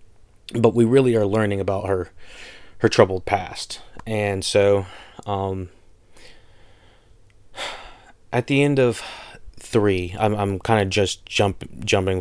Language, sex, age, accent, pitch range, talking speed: English, male, 30-49, American, 95-110 Hz, 125 wpm